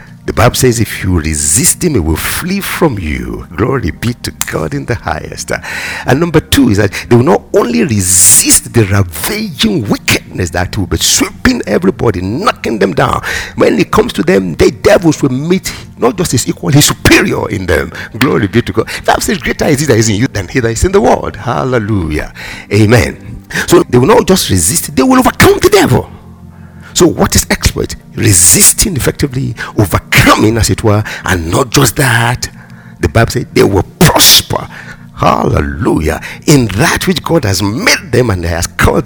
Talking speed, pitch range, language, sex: 185 wpm, 90-140 Hz, English, male